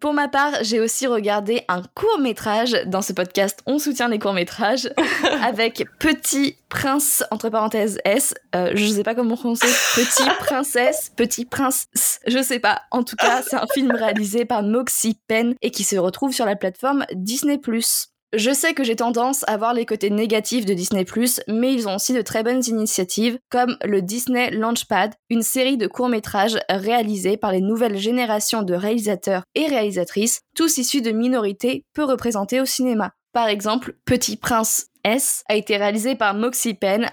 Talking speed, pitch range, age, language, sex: 175 wpm, 210-250 Hz, 20-39, French, female